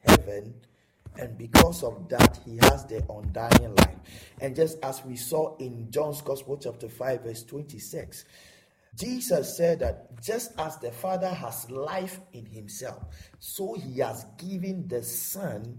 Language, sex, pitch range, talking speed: English, male, 125-180 Hz, 150 wpm